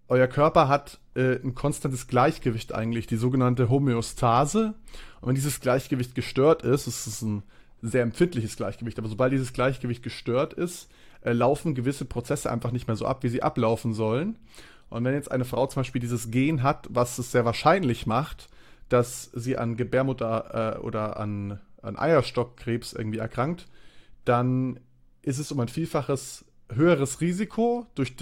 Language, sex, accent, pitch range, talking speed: German, male, German, 120-145 Hz, 165 wpm